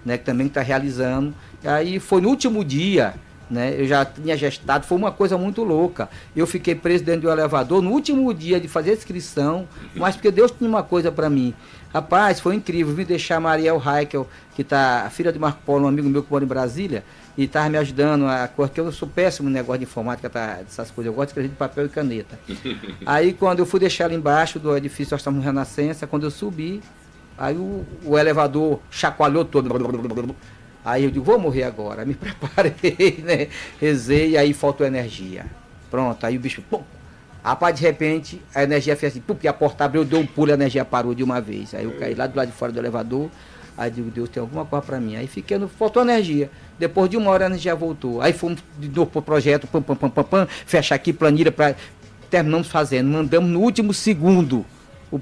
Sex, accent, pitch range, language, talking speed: male, Brazilian, 130-170 Hz, Portuguese, 215 wpm